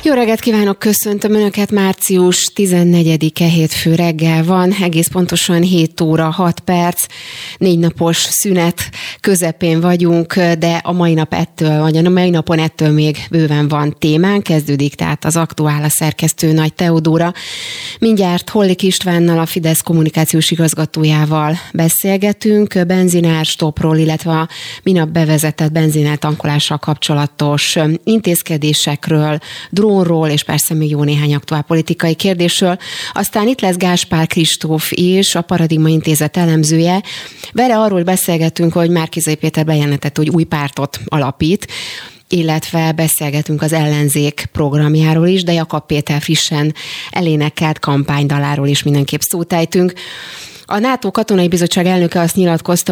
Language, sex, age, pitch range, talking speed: Hungarian, female, 30-49, 150-175 Hz, 125 wpm